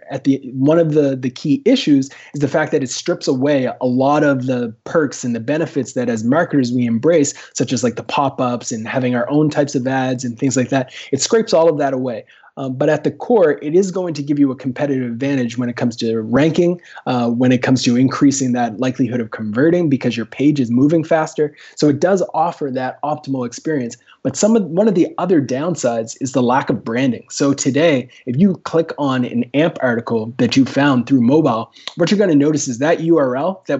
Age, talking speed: 20-39, 225 wpm